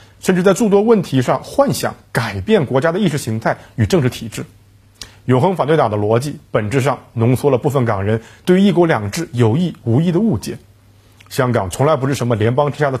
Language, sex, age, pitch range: Chinese, male, 50-69, 110-160 Hz